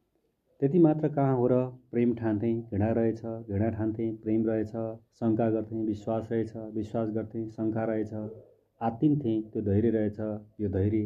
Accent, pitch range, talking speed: Indian, 105-120 Hz, 145 wpm